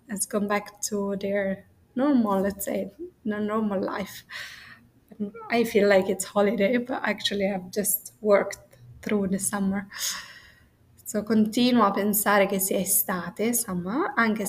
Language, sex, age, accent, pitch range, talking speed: Italian, female, 20-39, native, 195-235 Hz, 135 wpm